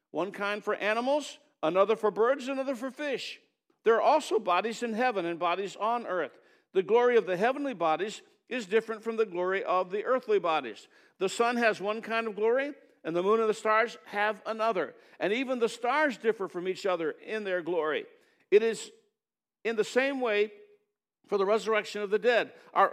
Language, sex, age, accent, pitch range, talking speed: English, male, 60-79, American, 195-265 Hz, 195 wpm